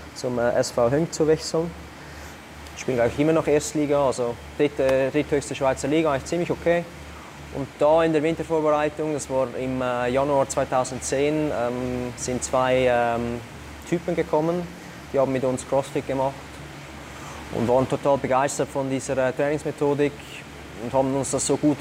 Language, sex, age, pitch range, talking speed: German, male, 20-39, 125-145 Hz, 150 wpm